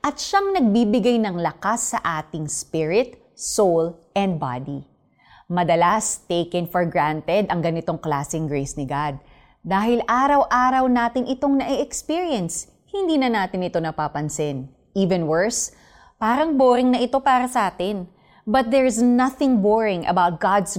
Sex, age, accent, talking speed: female, 20-39, native, 135 wpm